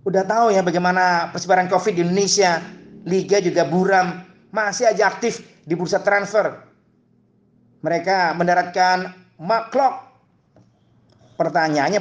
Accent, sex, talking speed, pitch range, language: native, male, 105 wpm, 165-200 Hz, Indonesian